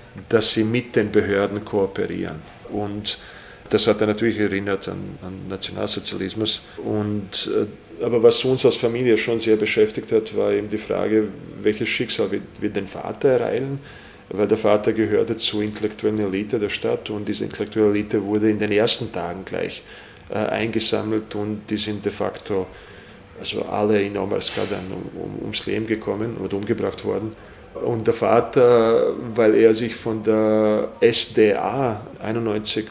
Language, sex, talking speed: German, male, 155 wpm